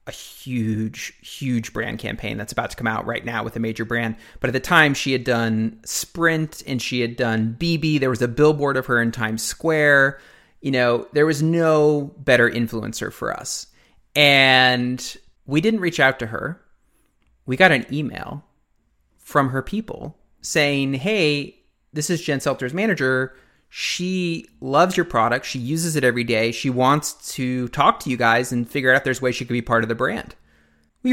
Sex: male